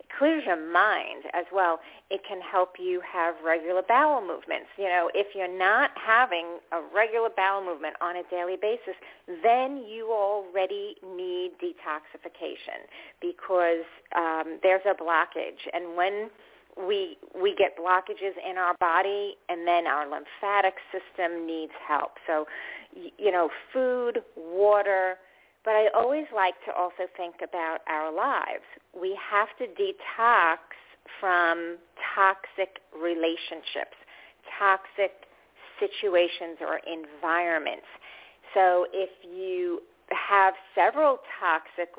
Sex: female